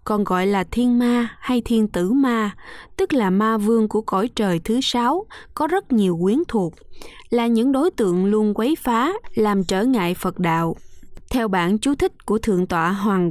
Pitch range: 185-250 Hz